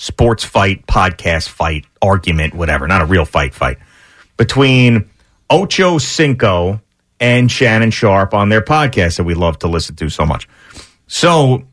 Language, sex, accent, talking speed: English, male, American, 150 wpm